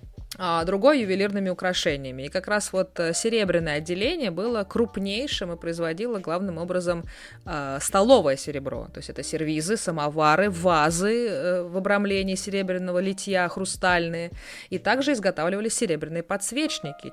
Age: 20-39